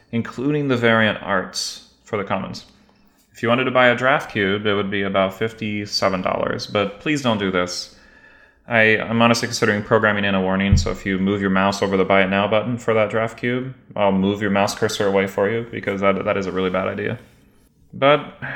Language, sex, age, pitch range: English, male, 30-49, 95-115 Hz